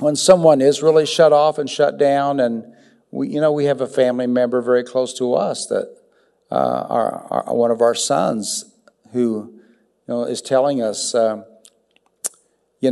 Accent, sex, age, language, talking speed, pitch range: American, male, 50-69, English, 175 wpm, 115-145 Hz